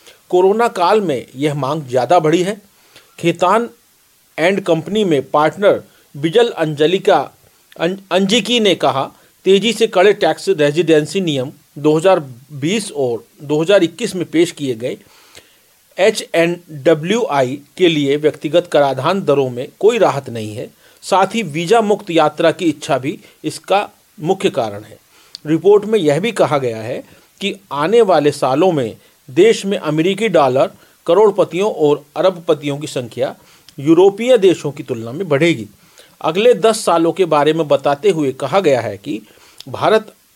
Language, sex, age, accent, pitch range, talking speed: Hindi, male, 40-59, native, 150-200 Hz, 140 wpm